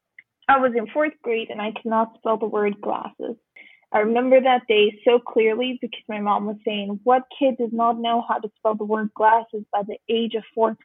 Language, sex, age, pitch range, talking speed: English, female, 20-39, 215-240 Hz, 215 wpm